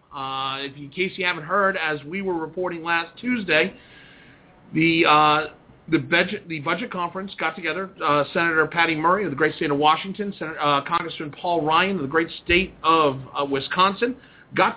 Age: 40-59